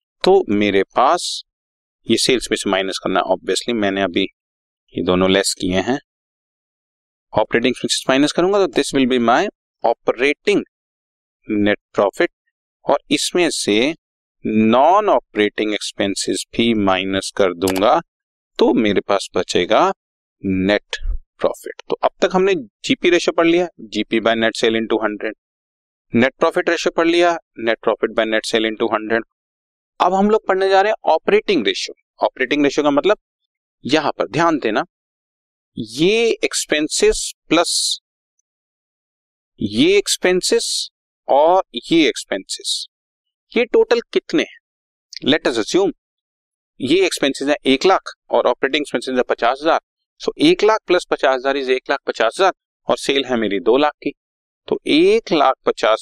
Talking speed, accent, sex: 135 wpm, native, male